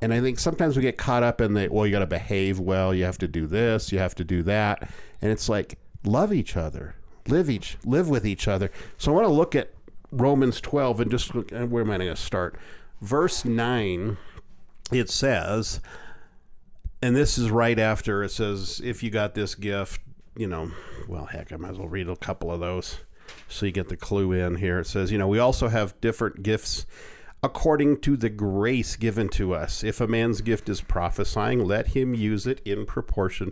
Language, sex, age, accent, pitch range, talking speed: English, male, 50-69, American, 95-120 Hz, 210 wpm